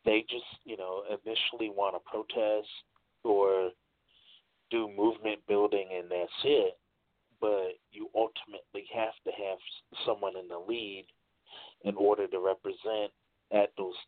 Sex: male